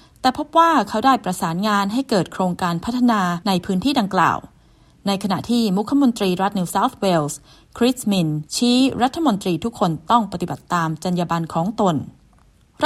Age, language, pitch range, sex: 20-39, Thai, 175-235 Hz, female